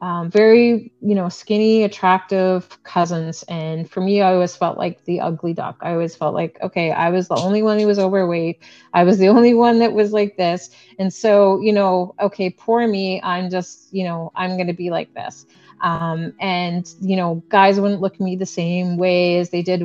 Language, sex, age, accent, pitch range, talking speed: English, female, 30-49, American, 175-210 Hz, 215 wpm